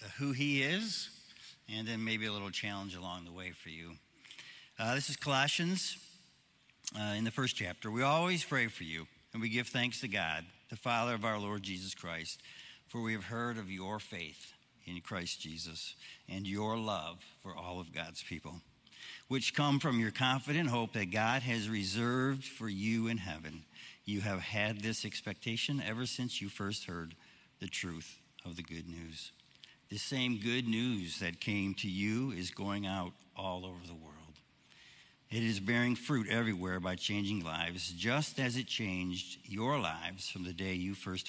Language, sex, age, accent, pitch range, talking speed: English, male, 60-79, American, 90-120 Hz, 180 wpm